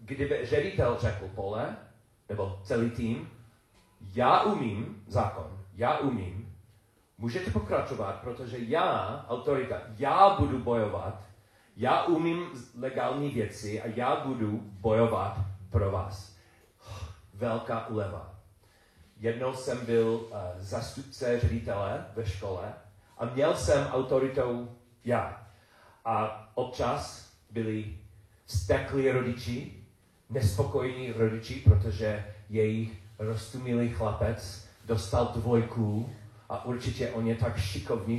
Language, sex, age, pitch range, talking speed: Czech, male, 40-59, 105-125 Hz, 100 wpm